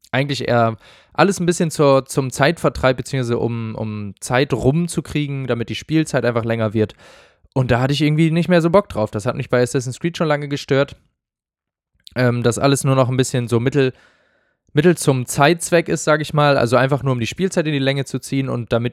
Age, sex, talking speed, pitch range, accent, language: 20-39, male, 210 wpm, 115-150 Hz, German, German